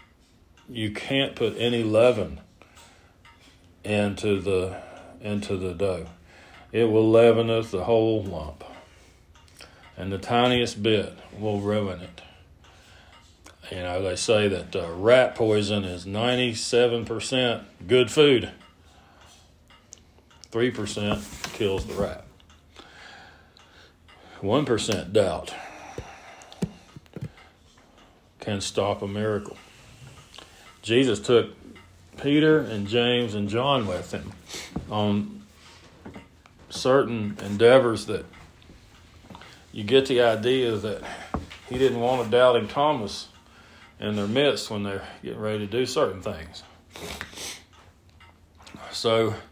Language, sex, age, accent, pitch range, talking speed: English, male, 40-59, American, 90-115 Hz, 100 wpm